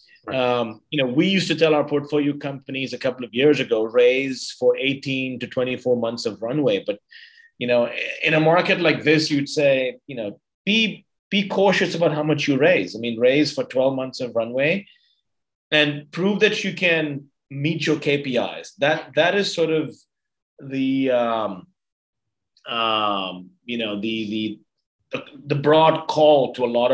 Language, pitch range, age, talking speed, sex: English, 120-165 Hz, 30-49, 175 wpm, male